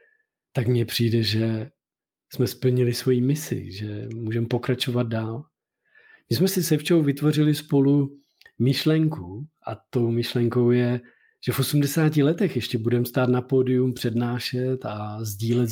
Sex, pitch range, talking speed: male, 115-145 Hz, 135 wpm